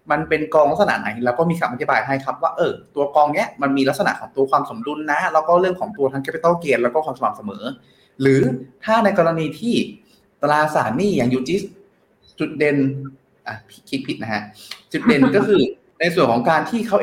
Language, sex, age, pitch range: Thai, male, 20-39, 130-175 Hz